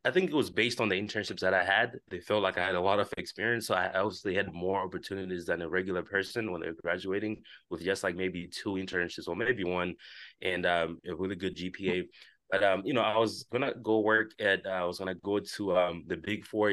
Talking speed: 245 wpm